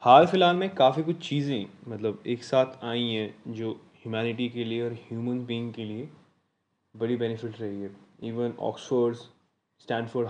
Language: Hindi